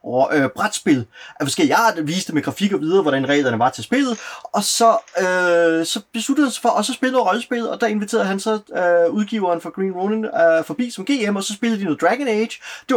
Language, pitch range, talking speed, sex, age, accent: Danish, 150-215 Hz, 220 wpm, male, 30-49, native